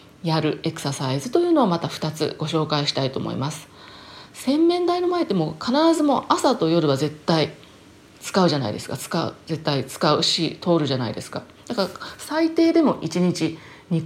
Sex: female